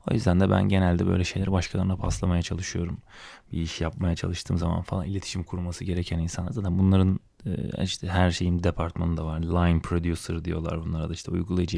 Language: Turkish